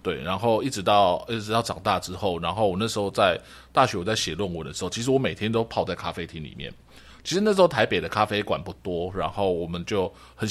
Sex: male